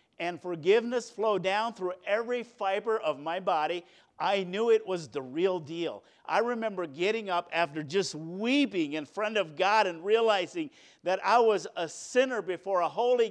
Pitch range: 175-220 Hz